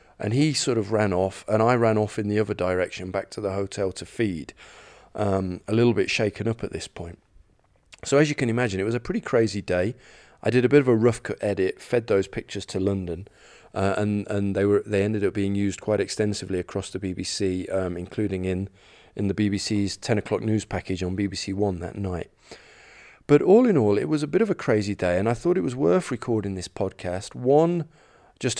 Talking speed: 220 wpm